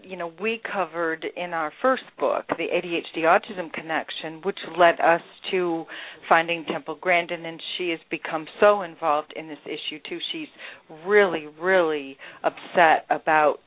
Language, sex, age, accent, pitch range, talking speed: English, female, 40-59, American, 155-175 Hz, 150 wpm